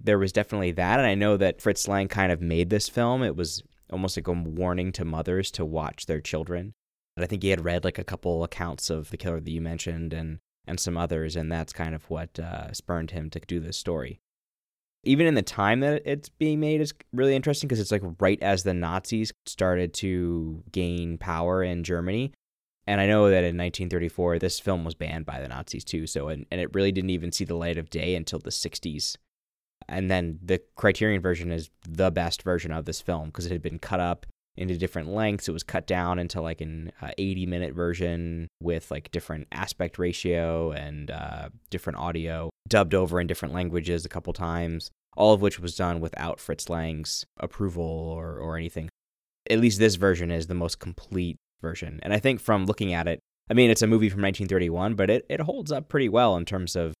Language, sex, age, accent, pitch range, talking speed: English, male, 20-39, American, 80-100 Hz, 215 wpm